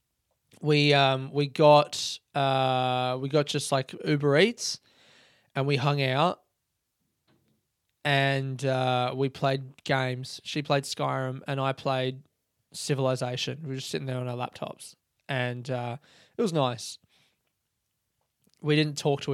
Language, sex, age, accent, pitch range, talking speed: English, male, 20-39, Australian, 130-155 Hz, 135 wpm